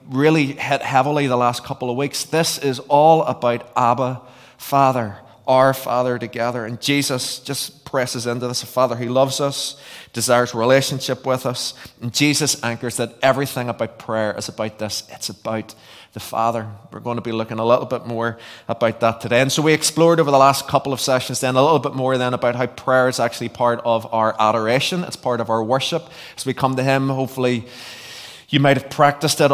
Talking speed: 205 wpm